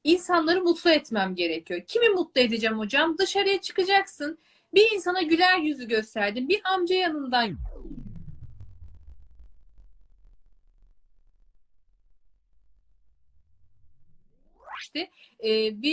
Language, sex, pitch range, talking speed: Turkish, female, 220-345 Hz, 70 wpm